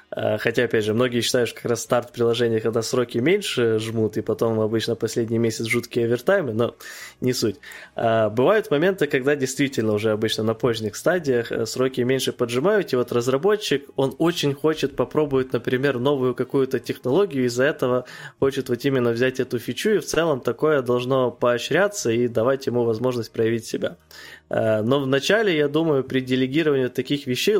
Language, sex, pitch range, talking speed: Ukrainian, male, 115-135 Hz, 165 wpm